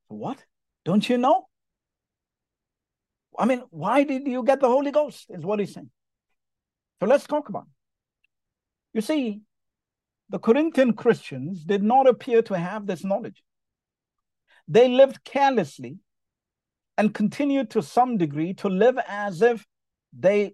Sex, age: male, 50-69